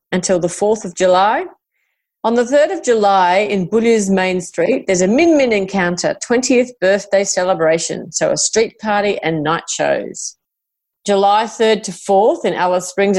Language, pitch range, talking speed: English, 180-240 Hz, 165 wpm